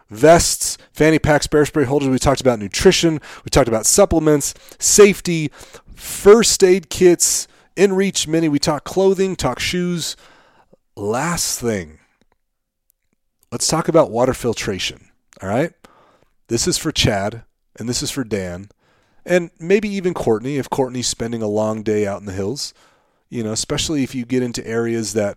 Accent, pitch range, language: American, 105-150 Hz, English